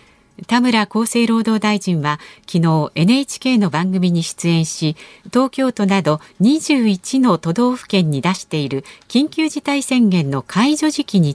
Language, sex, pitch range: Japanese, female, 165-245 Hz